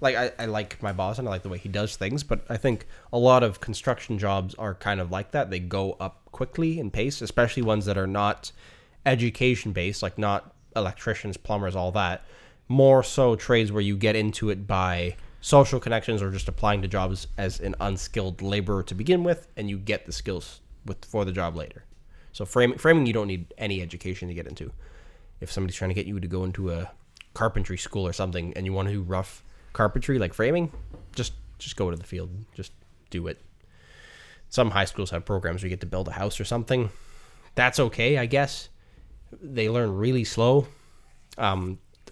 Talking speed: 205 wpm